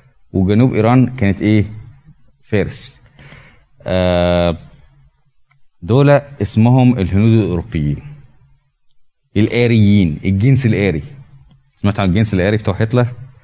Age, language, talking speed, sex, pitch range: 20-39, Arabic, 85 wpm, male, 95-125 Hz